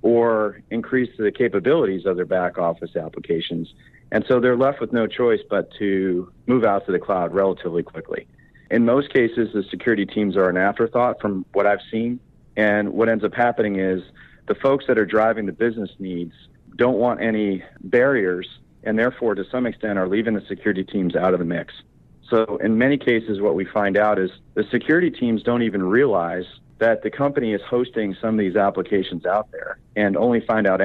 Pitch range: 95-115 Hz